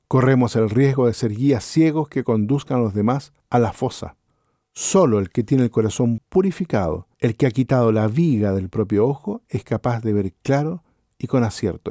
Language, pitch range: Spanish, 105-140 Hz